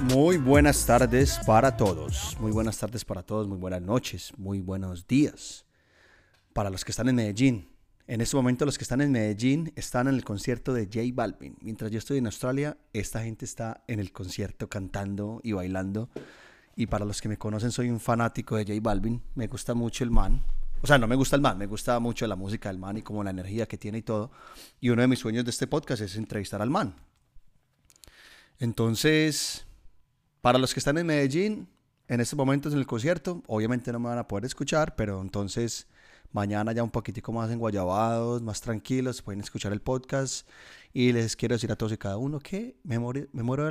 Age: 30-49